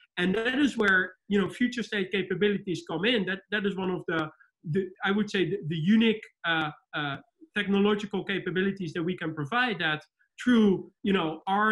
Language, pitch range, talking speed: English, 175-215 Hz, 190 wpm